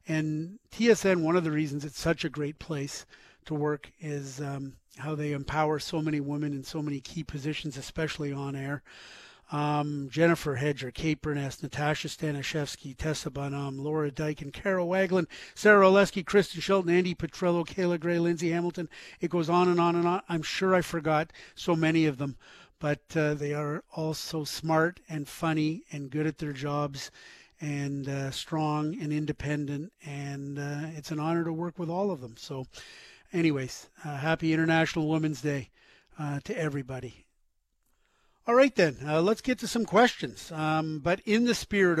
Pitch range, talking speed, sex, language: 145-170 Hz, 175 wpm, male, English